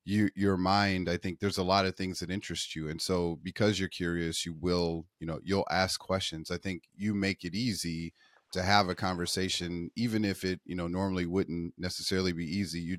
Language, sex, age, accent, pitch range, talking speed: English, male, 30-49, American, 85-95 Hz, 210 wpm